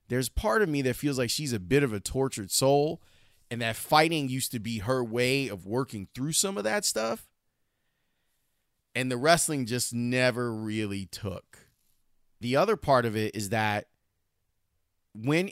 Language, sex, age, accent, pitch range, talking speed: English, male, 30-49, American, 110-155 Hz, 170 wpm